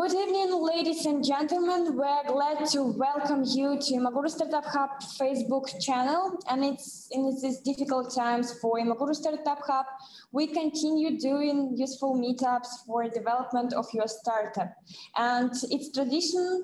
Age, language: 10-29, Russian